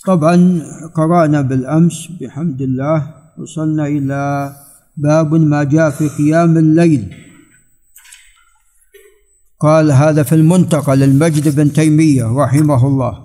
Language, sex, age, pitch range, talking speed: Arabic, male, 50-69, 155-180 Hz, 100 wpm